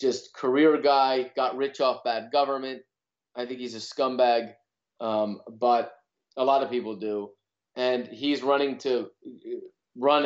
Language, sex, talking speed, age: Swedish, male, 145 wpm, 30-49